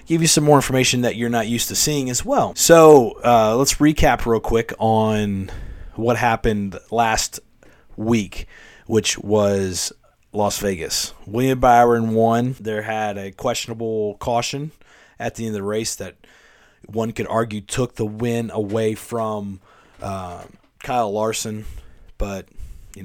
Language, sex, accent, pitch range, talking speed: English, male, American, 100-120 Hz, 145 wpm